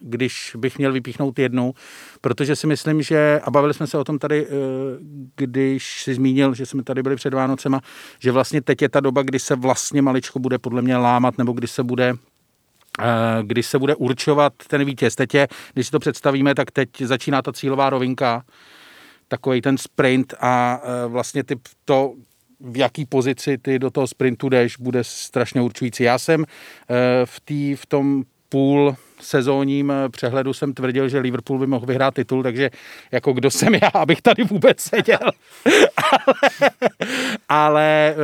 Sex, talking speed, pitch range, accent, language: male, 165 wpm, 125-145 Hz, native, Czech